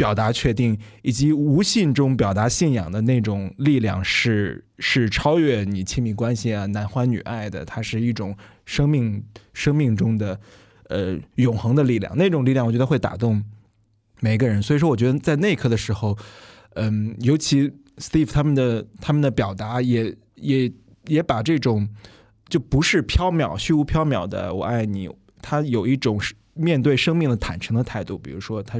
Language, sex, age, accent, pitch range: Chinese, male, 20-39, native, 105-140 Hz